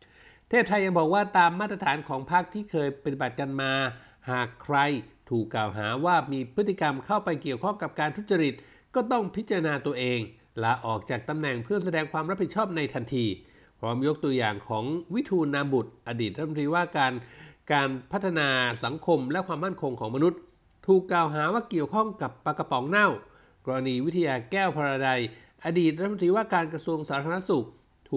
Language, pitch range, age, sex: Thai, 125-175 Hz, 60-79, male